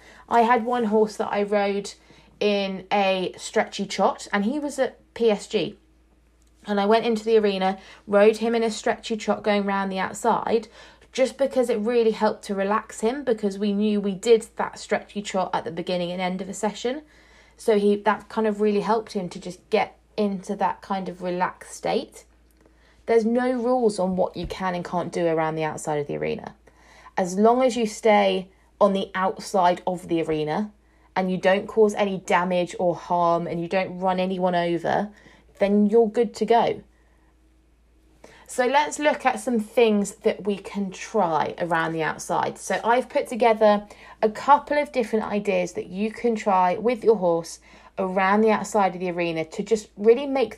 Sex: female